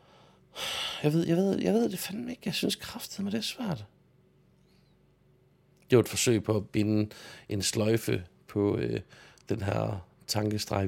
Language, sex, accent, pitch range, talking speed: Danish, male, native, 95-115 Hz, 165 wpm